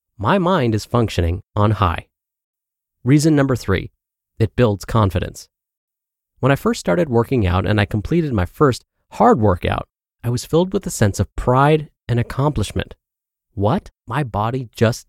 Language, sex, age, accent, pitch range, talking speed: English, male, 30-49, American, 100-145 Hz, 155 wpm